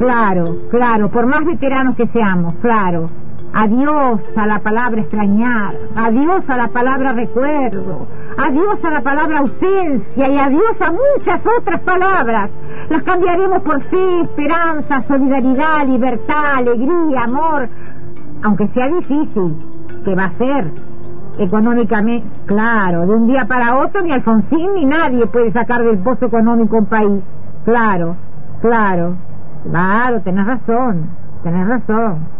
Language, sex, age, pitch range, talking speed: Spanish, female, 50-69, 215-320 Hz, 130 wpm